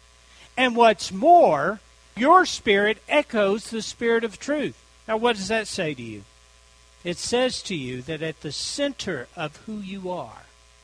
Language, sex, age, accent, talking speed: English, male, 60-79, American, 160 wpm